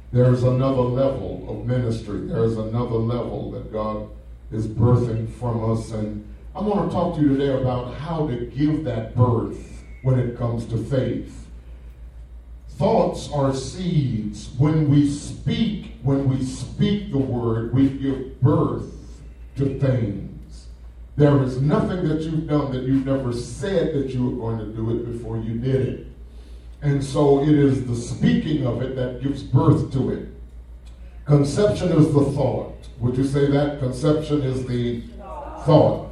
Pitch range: 115-150 Hz